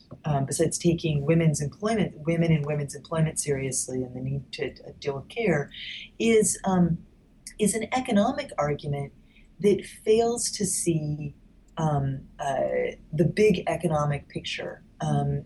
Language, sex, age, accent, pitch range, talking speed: English, female, 30-49, American, 145-185 Hz, 135 wpm